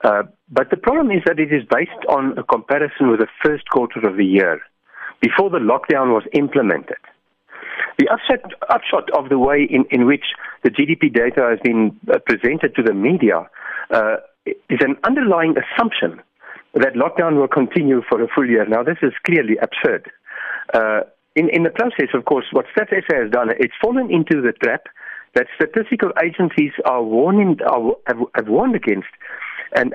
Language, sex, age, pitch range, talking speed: English, male, 60-79, 130-195 Hz, 175 wpm